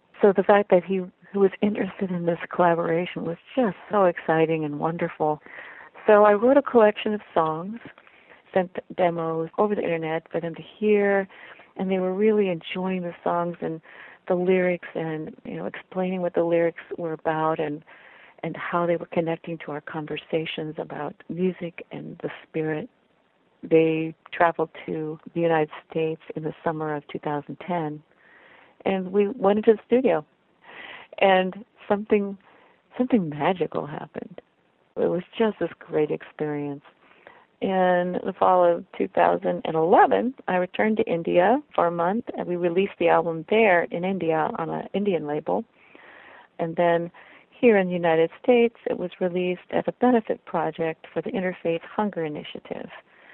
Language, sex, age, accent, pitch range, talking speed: English, female, 50-69, American, 160-195 Hz, 155 wpm